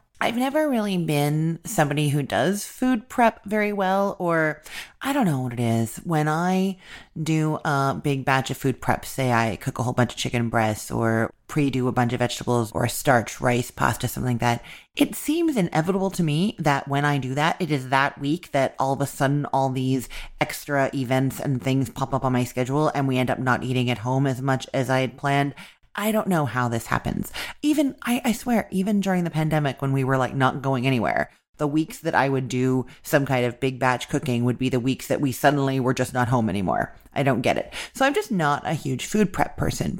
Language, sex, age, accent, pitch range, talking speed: English, female, 30-49, American, 130-170 Hz, 225 wpm